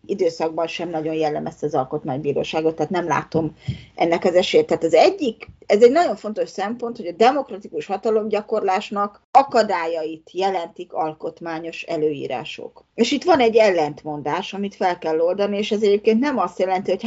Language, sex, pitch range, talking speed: Hungarian, female, 165-220 Hz, 155 wpm